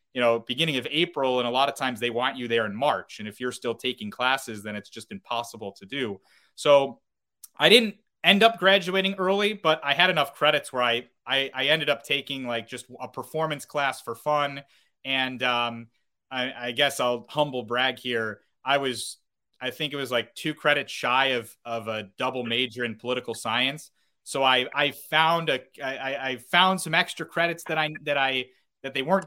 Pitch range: 115-150 Hz